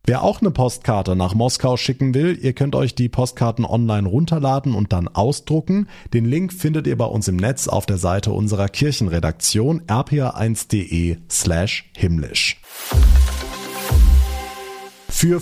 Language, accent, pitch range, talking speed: German, German, 100-145 Hz, 130 wpm